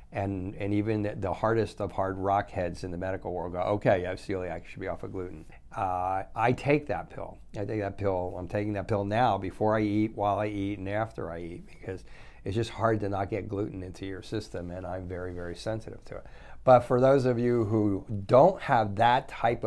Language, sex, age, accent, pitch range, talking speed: English, male, 50-69, American, 95-110 Hz, 230 wpm